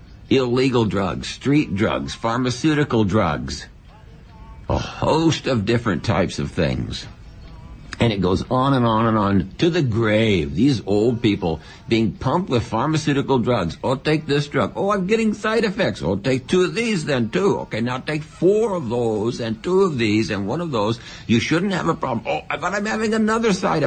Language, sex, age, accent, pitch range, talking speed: English, male, 60-79, American, 105-155 Hz, 185 wpm